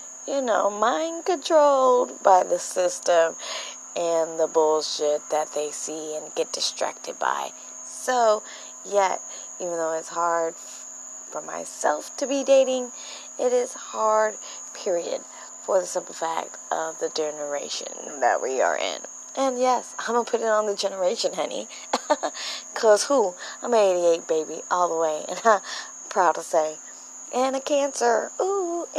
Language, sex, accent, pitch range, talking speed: English, female, American, 165-270 Hz, 145 wpm